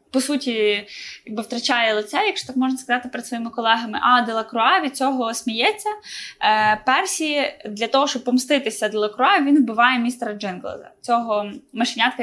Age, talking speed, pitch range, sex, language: 10-29, 140 wpm, 230-275 Hz, female, Ukrainian